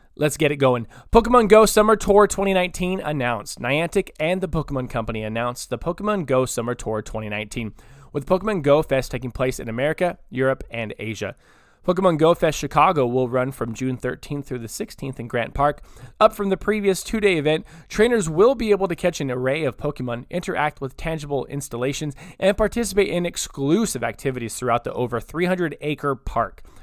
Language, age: English, 20-39